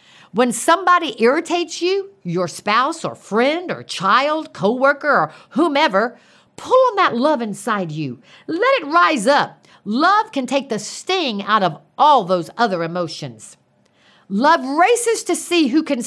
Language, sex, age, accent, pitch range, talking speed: English, female, 50-69, American, 195-320 Hz, 150 wpm